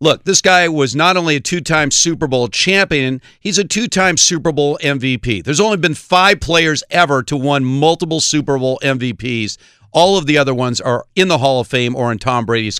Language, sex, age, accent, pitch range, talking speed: English, male, 50-69, American, 125-195 Hz, 205 wpm